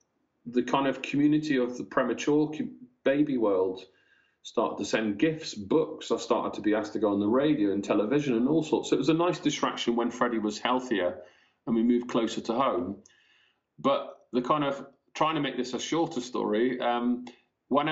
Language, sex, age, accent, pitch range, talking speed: English, male, 40-59, British, 110-140 Hz, 195 wpm